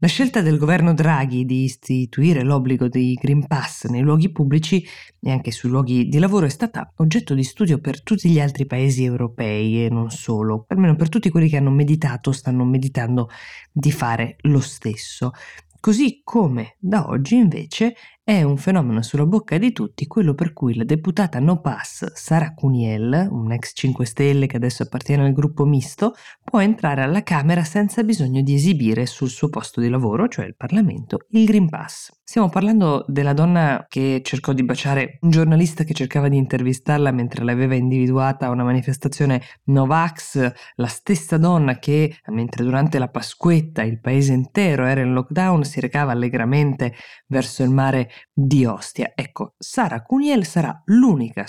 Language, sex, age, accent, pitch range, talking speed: Italian, female, 20-39, native, 125-165 Hz, 170 wpm